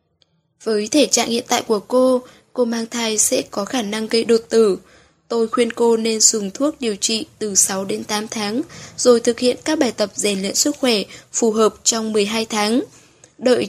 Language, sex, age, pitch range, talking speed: Vietnamese, female, 10-29, 210-250 Hz, 200 wpm